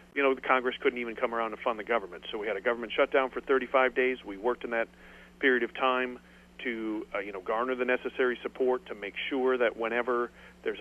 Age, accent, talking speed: 40-59, American, 235 wpm